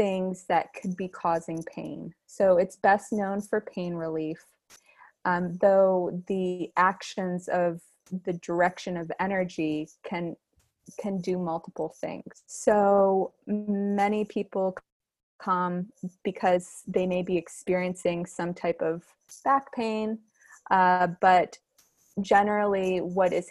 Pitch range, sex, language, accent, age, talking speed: 180-200 Hz, female, English, American, 20-39, 115 wpm